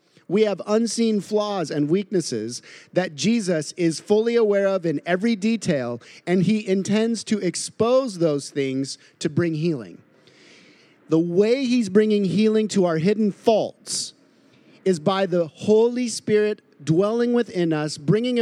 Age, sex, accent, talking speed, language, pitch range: 40-59, male, American, 140 wpm, English, 160-210 Hz